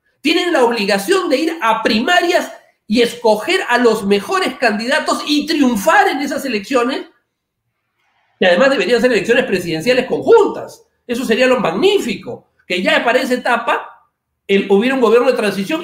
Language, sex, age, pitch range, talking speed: Spanish, male, 40-59, 195-295 Hz, 150 wpm